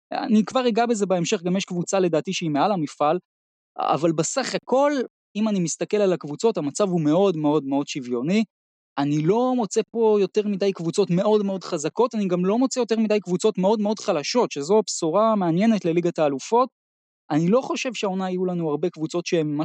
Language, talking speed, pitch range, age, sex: Hebrew, 185 wpm, 155-225 Hz, 20-39, male